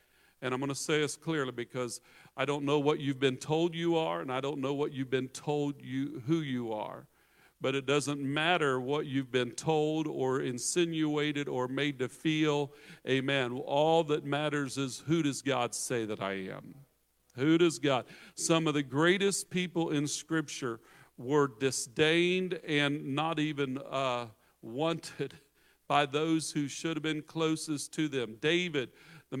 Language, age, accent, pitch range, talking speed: English, 50-69, American, 135-160 Hz, 170 wpm